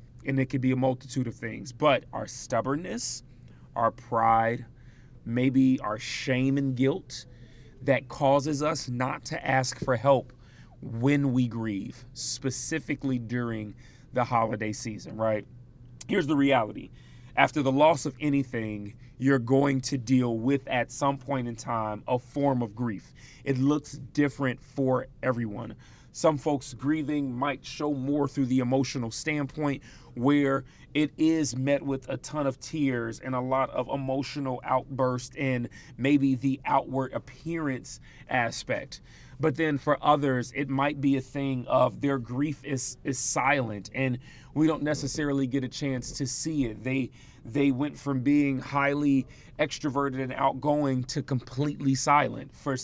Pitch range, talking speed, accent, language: 125-145 Hz, 150 wpm, American, English